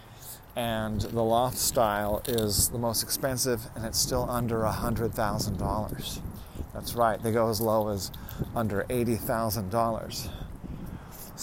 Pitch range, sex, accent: 110-125 Hz, male, American